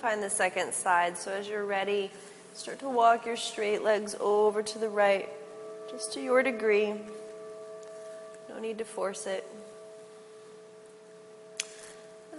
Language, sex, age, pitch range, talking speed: English, female, 30-49, 185-220 Hz, 135 wpm